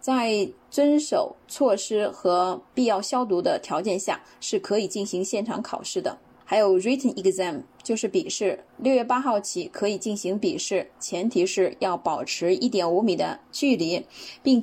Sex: female